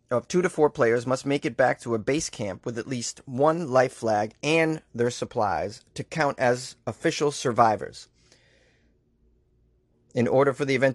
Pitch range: 115-145 Hz